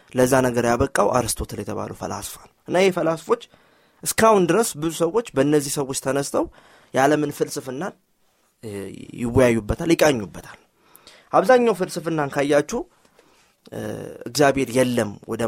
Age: 20-39